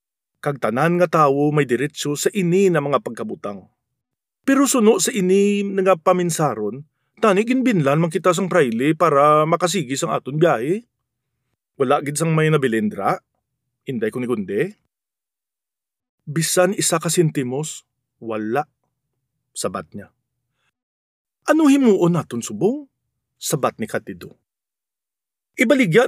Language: English